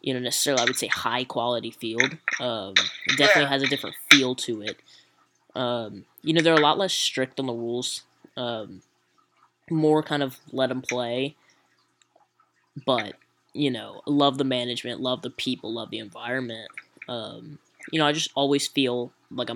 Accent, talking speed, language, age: American, 170 wpm, English, 10-29